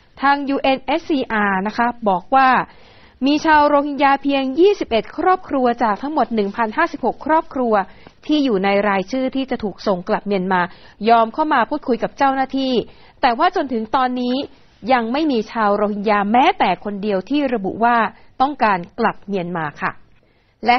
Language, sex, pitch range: Thai, female, 205-270 Hz